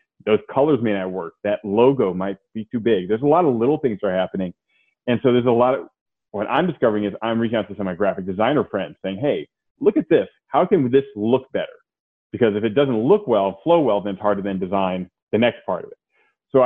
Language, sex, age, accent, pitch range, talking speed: English, male, 30-49, American, 100-140 Hz, 245 wpm